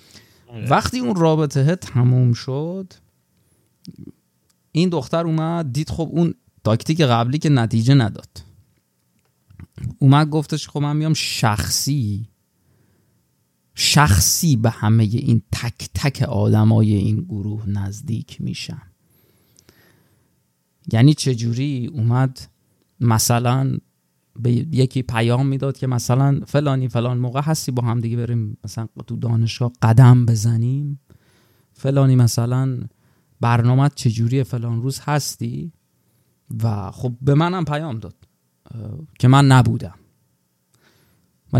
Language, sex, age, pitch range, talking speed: Persian, male, 30-49, 110-140 Hz, 105 wpm